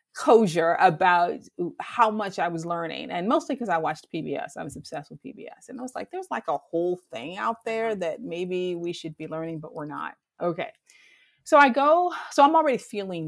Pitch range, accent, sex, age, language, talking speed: 160-215 Hz, American, female, 30-49, English, 210 wpm